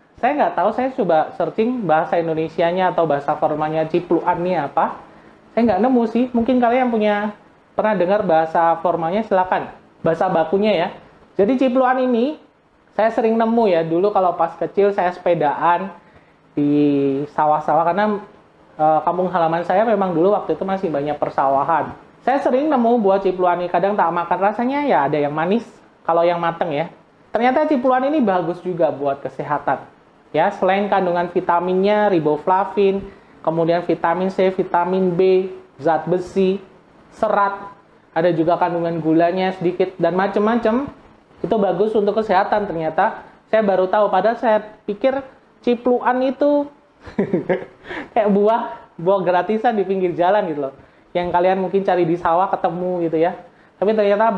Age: 20-39